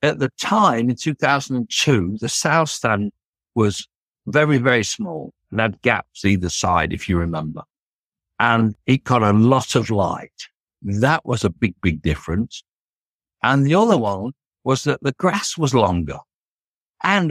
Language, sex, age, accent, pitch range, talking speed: English, male, 60-79, British, 100-135 Hz, 155 wpm